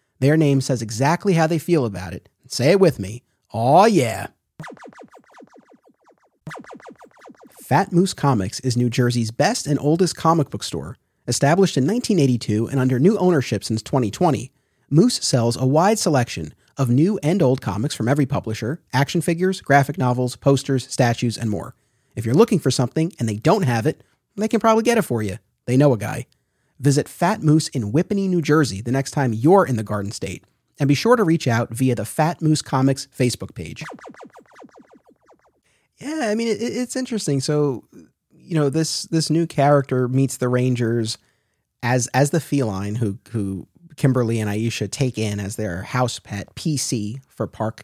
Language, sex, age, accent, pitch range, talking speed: English, male, 30-49, American, 115-155 Hz, 175 wpm